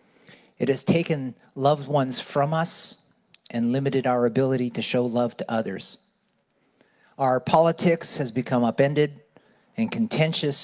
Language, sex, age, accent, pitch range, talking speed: English, male, 40-59, American, 125-160 Hz, 130 wpm